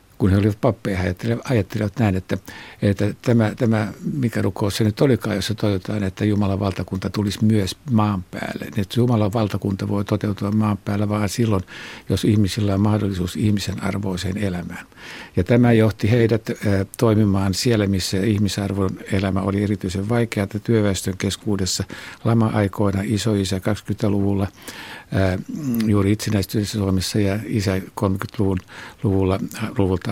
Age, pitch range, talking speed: 60-79, 100-115 Hz, 130 wpm